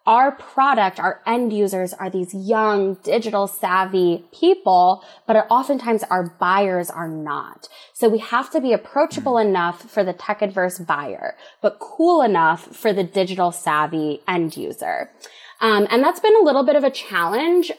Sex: female